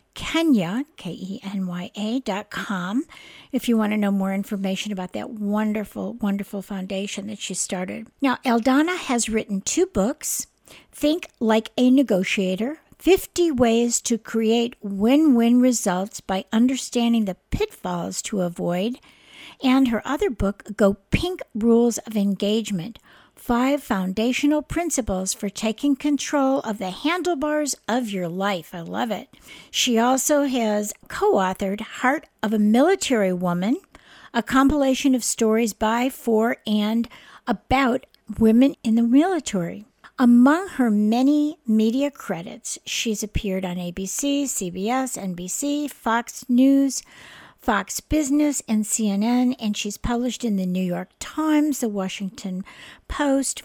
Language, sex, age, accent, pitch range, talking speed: English, female, 60-79, American, 205-265 Hz, 130 wpm